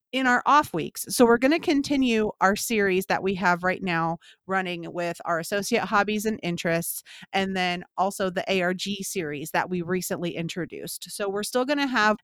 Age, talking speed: 30-49, 190 wpm